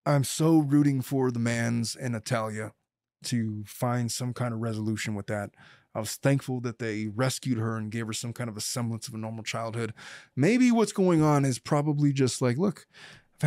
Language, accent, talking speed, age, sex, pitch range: English, American, 200 wpm, 20-39, male, 115-140 Hz